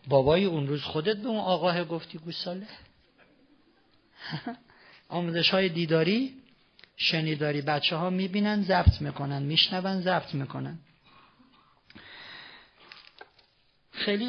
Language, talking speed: Persian, 90 wpm